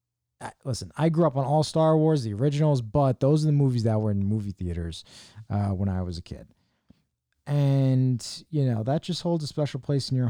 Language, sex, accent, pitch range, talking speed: English, male, American, 105-145 Hz, 215 wpm